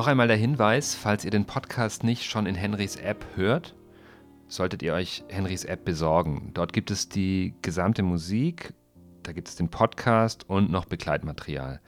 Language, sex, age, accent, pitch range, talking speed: German, male, 40-59, German, 85-115 Hz, 170 wpm